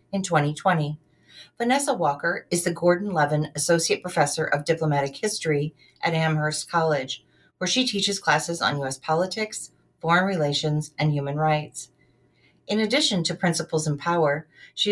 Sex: female